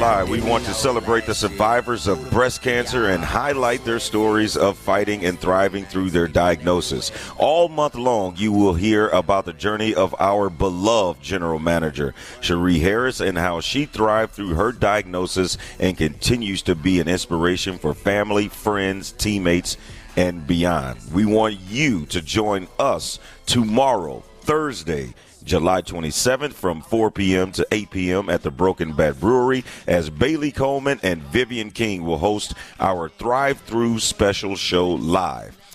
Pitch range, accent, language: 90-115 Hz, American, English